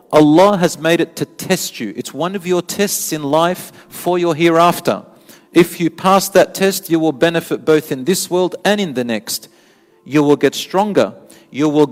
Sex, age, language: male, 40-59, English